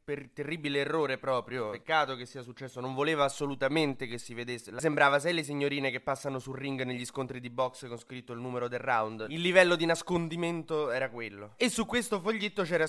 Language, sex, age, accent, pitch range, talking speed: Italian, male, 20-39, native, 130-170 Hz, 200 wpm